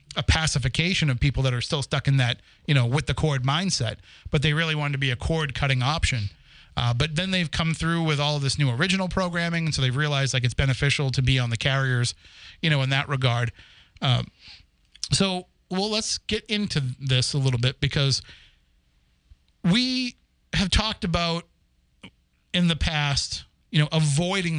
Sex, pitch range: male, 120-165 Hz